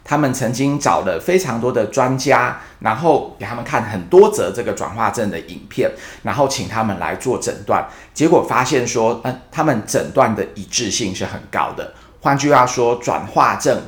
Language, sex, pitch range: Chinese, male, 105-135 Hz